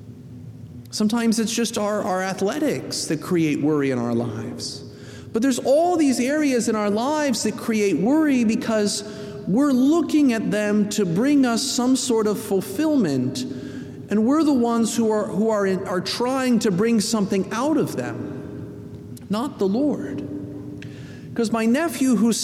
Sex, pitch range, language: male, 175-250 Hz, English